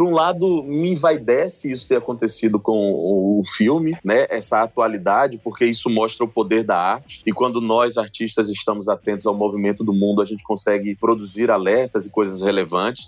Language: Portuguese